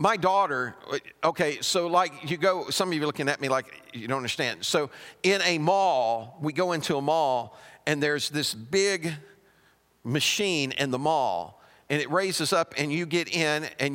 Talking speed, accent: 190 wpm, American